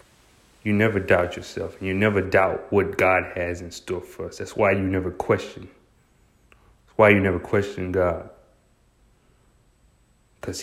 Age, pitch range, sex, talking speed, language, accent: 30-49, 90-105 Hz, male, 150 wpm, English, American